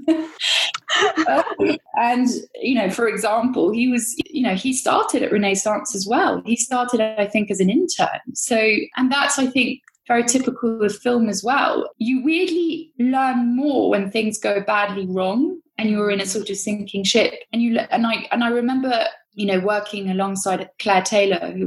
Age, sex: 10-29, female